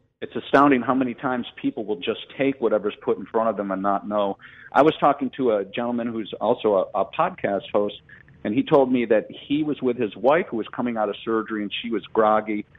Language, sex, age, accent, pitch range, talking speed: English, male, 50-69, American, 100-125 Hz, 235 wpm